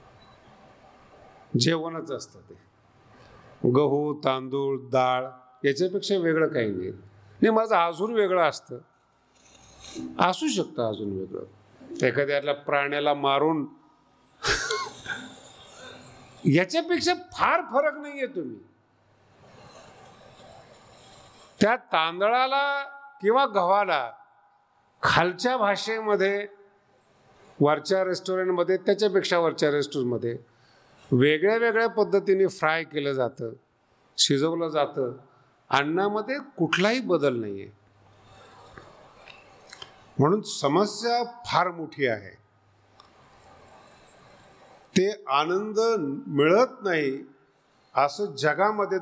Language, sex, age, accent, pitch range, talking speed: Marathi, male, 50-69, native, 135-200 Hz, 75 wpm